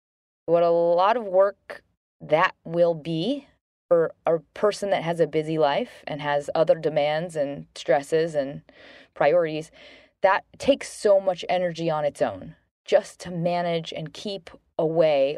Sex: female